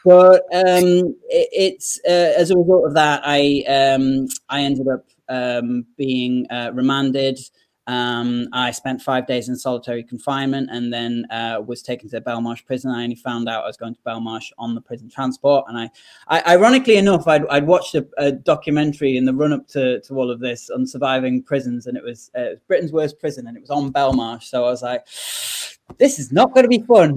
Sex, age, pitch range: male, 20-39, 125-160 Hz